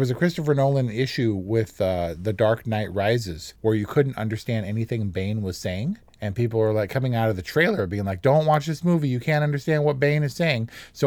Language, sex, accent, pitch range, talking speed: English, male, American, 105-140 Hz, 230 wpm